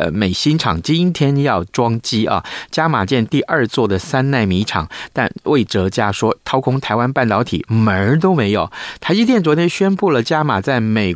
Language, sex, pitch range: Chinese, male, 100-140 Hz